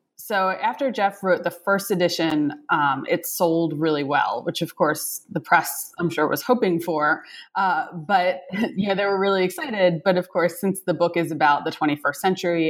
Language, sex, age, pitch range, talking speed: English, female, 20-39, 155-190 Hz, 190 wpm